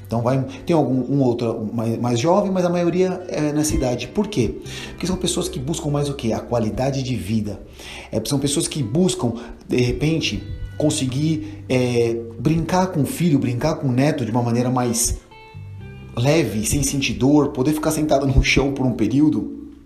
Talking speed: 175 wpm